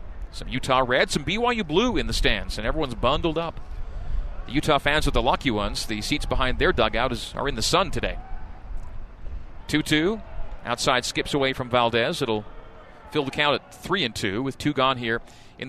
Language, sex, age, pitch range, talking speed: English, male, 40-59, 110-140 Hz, 180 wpm